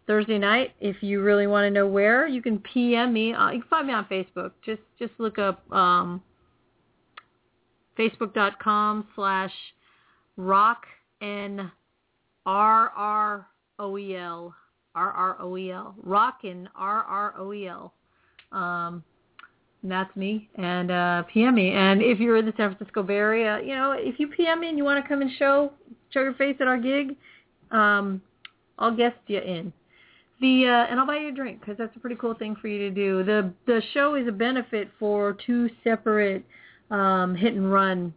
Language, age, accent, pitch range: English, 40-59, American, 190-230 Hz